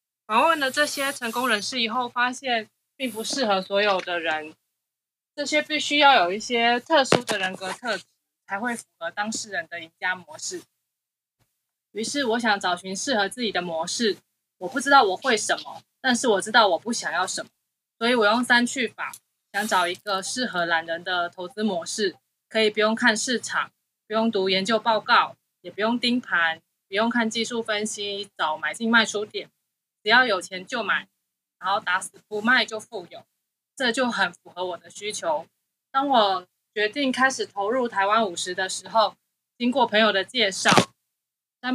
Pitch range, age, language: 190-240 Hz, 20-39, Chinese